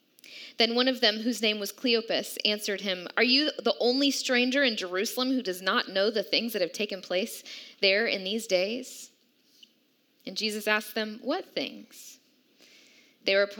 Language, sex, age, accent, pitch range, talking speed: English, female, 10-29, American, 205-255 Hz, 170 wpm